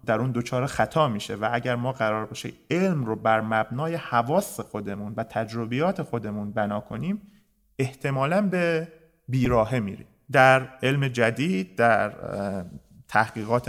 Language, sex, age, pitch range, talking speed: Persian, male, 30-49, 110-150 Hz, 130 wpm